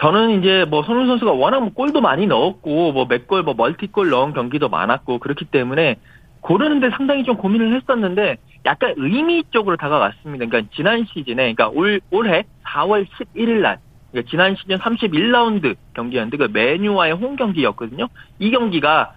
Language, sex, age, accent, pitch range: Korean, male, 40-59, native, 140-225 Hz